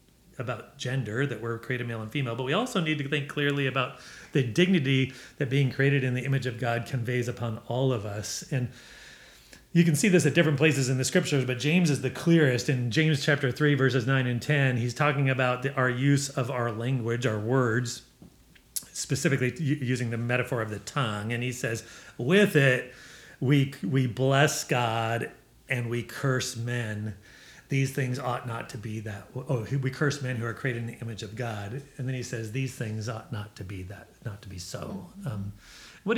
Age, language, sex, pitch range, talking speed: 40-59, English, male, 115-140 Hz, 200 wpm